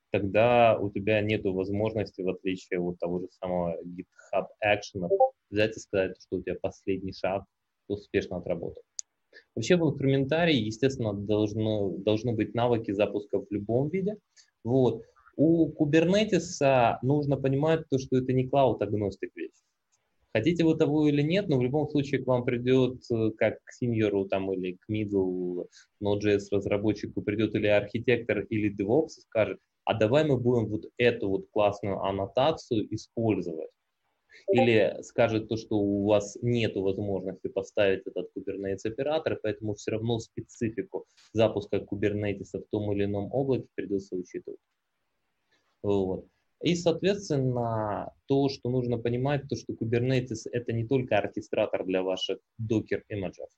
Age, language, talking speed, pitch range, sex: 20-39, Ukrainian, 140 wpm, 100-135 Hz, male